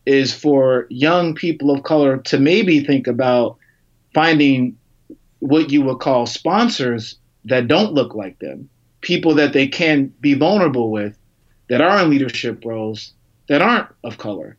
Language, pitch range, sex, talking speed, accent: English, 125-165 Hz, male, 150 wpm, American